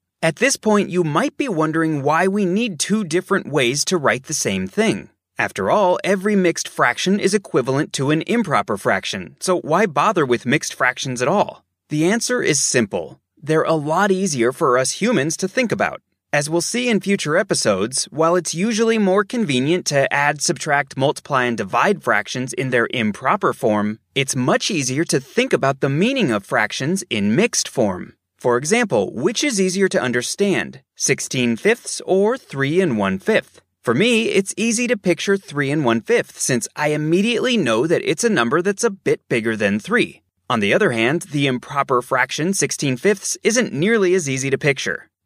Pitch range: 135-200 Hz